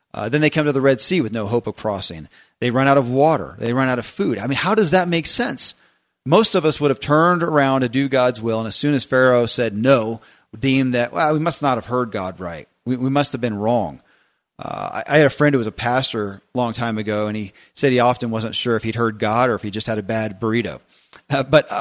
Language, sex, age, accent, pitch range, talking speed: English, male, 40-59, American, 115-140 Hz, 270 wpm